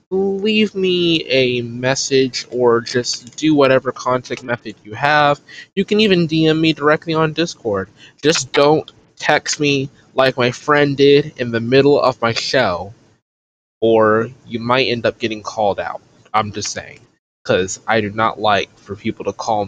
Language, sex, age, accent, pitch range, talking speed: English, male, 20-39, American, 110-150 Hz, 165 wpm